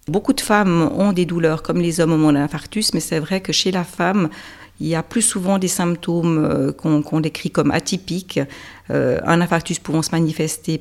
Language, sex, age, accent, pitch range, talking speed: French, female, 50-69, French, 150-170 Hz, 205 wpm